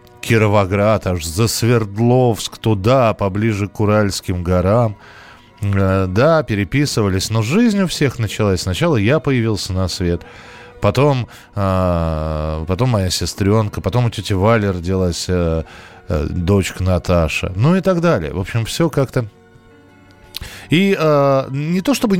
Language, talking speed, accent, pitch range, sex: Russian, 130 wpm, native, 90-130 Hz, male